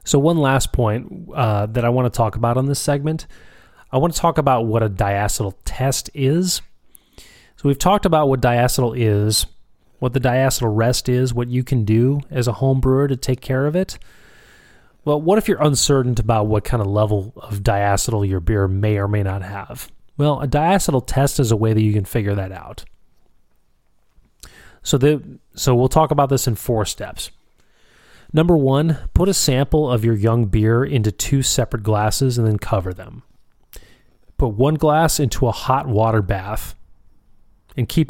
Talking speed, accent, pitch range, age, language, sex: 185 wpm, American, 110-140 Hz, 30-49, English, male